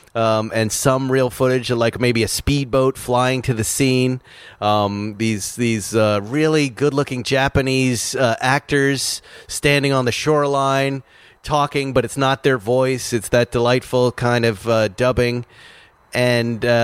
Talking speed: 150 wpm